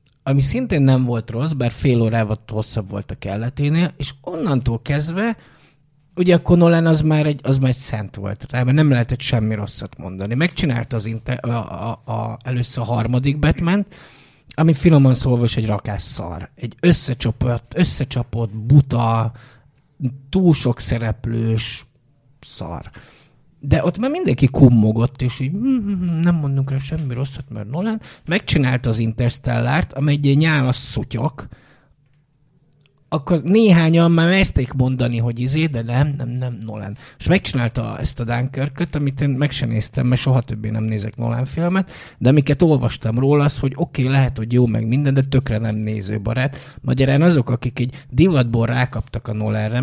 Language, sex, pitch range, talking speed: Hungarian, male, 115-145 Hz, 155 wpm